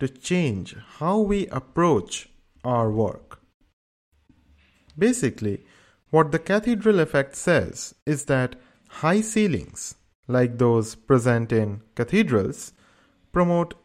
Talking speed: 100 wpm